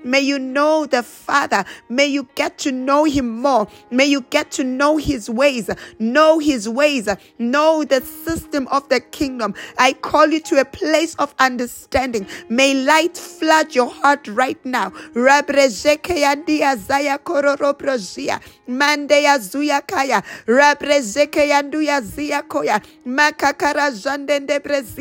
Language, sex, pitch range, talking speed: English, female, 270-300 Hz, 105 wpm